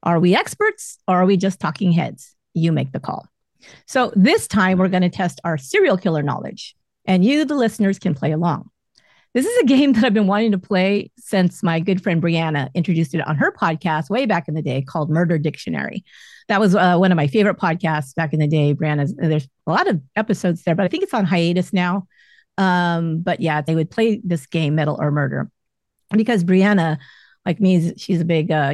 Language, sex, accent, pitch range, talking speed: English, female, American, 160-210 Hz, 215 wpm